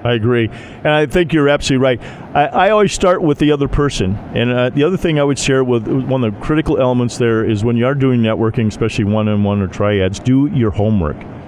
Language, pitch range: English, 115-155 Hz